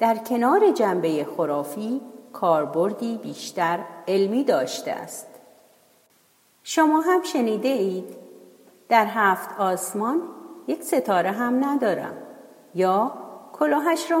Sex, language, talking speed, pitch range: female, Persian, 95 wpm, 190-260 Hz